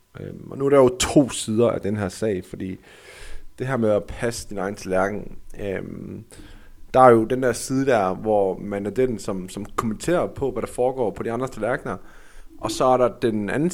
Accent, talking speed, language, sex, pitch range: native, 215 wpm, Danish, male, 100-125 Hz